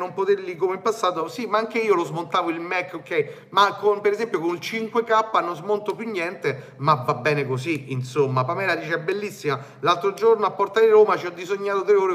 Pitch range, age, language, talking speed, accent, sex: 155-210 Hz, 30-49, Italian, 210 wpm, native, male